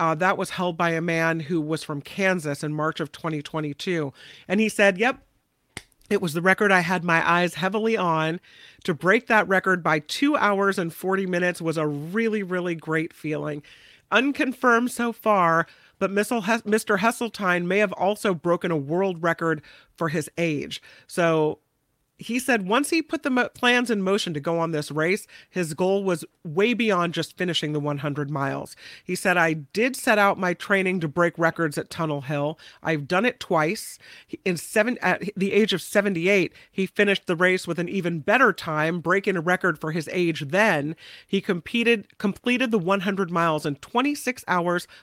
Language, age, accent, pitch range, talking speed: English, 40-59, American, 160-205 Hz, 185 wpm